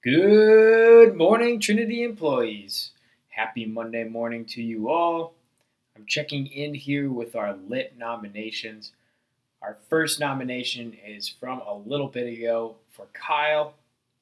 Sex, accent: male, American